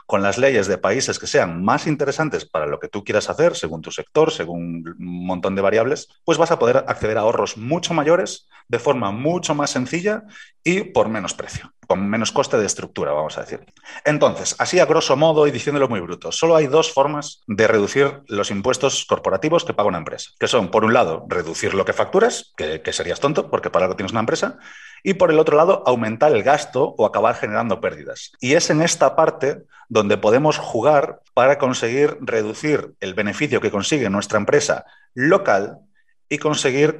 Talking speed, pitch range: 195 wpm, 125-160 Hz